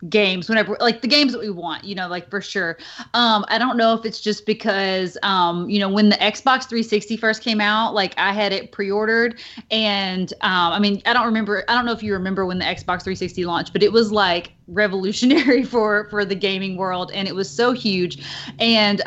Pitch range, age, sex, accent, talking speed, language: 180-220 Hz, 20-39, female, American, 220 wpm, English